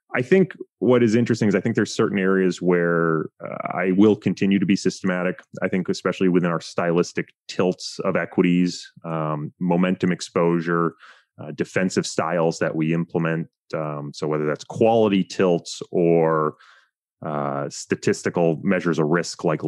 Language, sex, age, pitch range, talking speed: English, male, 30-49, 80-100 Hz, 150 wpm